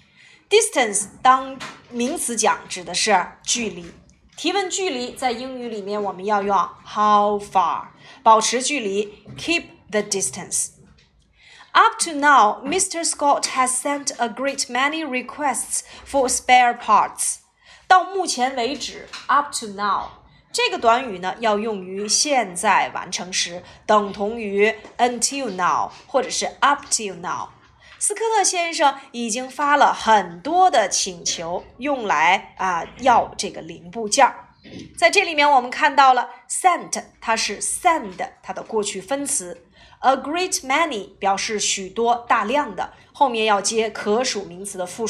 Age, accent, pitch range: 30-49, native, 205-285 Hz